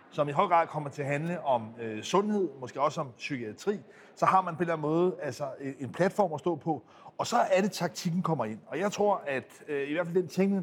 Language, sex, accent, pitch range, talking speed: Danish, male, native, 145-185 Hz, 260 wpm